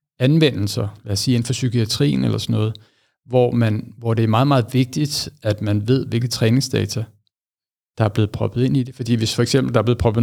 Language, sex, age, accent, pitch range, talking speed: Danish, male, 60-79, native, 115-140 Hz, 225 wpm